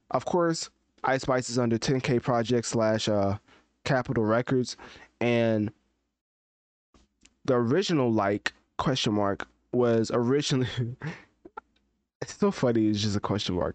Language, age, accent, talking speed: English, 20-39, American, 120 wpm